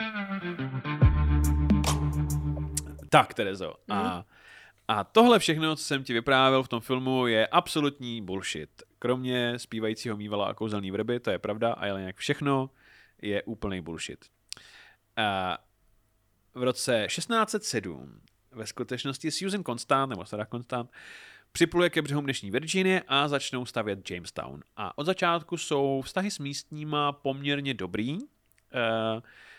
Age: 30-49